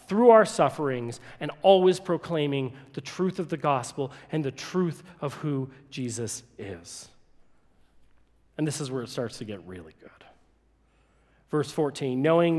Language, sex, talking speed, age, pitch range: English, male, 150 wpm, 40-59, 145-195 Hz